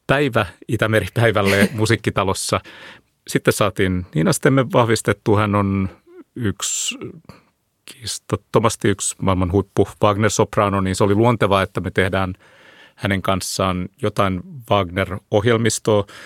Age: 30-49